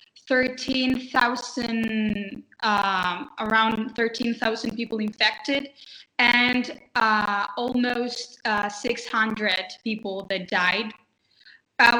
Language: Turkish